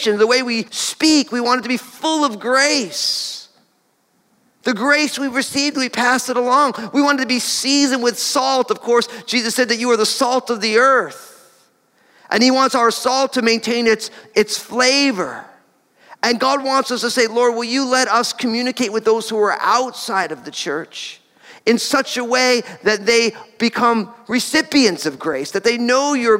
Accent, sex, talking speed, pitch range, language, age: American, male, 190 wpm, 210-255 Hz, English, 40-59